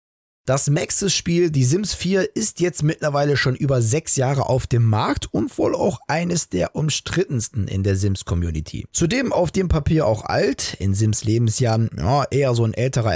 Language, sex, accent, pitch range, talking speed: German, male, German, 110-150 Hz, 165 wpm